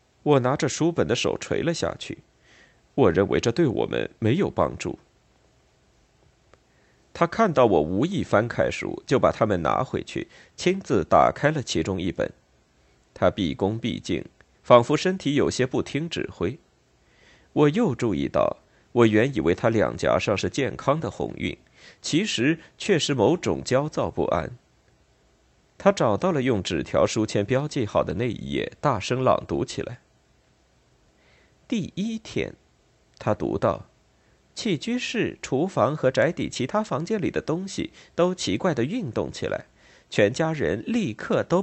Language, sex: Chinese, male